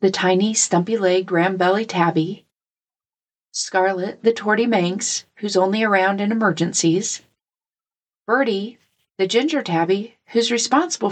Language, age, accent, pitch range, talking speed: English, 40-59, American, 185-230 Hz, 110 wpm